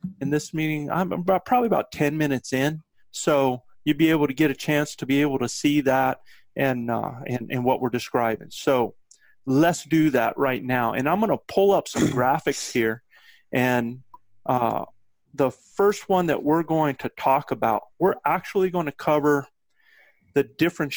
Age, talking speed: 30-49, 180 wpm